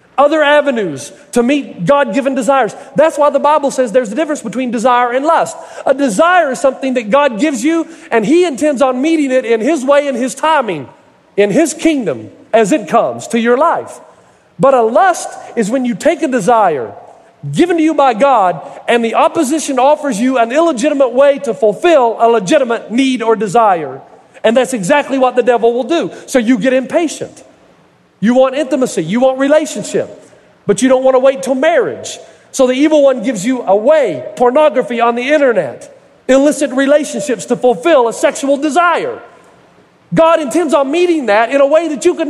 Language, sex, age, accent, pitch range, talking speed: English, male, 40-59, American, 250-310 Hz, 185 wpm